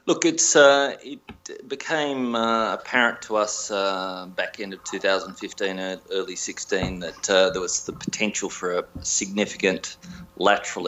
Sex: male